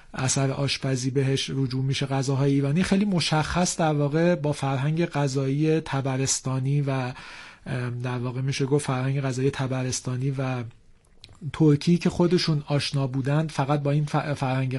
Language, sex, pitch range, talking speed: Persian, male, 135-155 Hz, 135 wpm